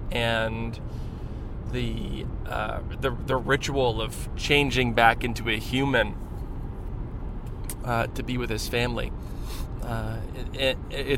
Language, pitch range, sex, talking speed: English, 105-125 Hz, male, 115 wpm